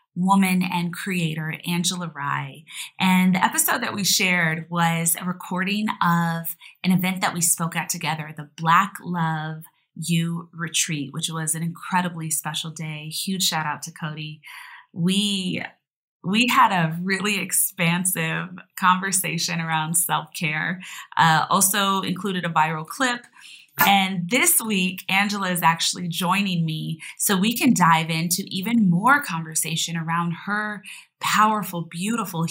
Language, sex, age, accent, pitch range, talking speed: English, female, 20-39, American, 165-195 Hz, 135 wpm